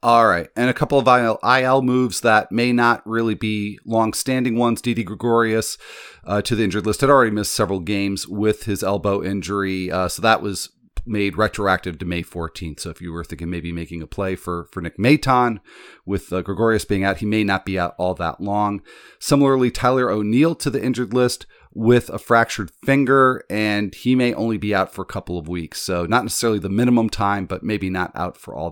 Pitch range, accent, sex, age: 95-115 Hz, American, male, 40-59